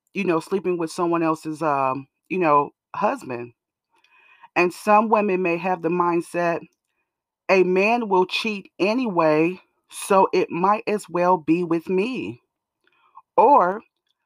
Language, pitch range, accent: English, 170-220 Hz, American